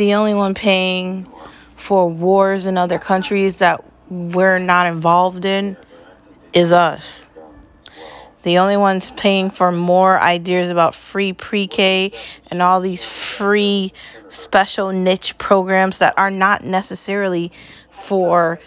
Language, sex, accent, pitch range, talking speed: English, female, American, 180-210 Hz, 120 wpm